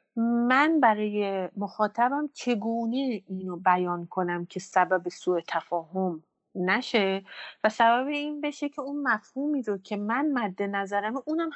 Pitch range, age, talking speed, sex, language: 185-275 Hz, 30-49, 130 wpm, female, Persian